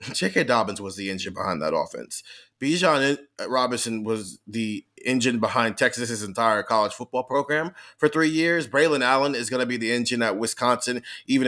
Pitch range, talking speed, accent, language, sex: 115-145 Hz, 175 wpm, American, English, male